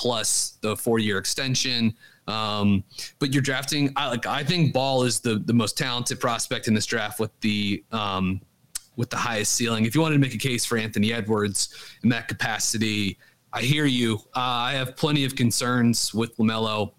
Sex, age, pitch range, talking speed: male, 30-49, 105-125 Hz, 185 wpm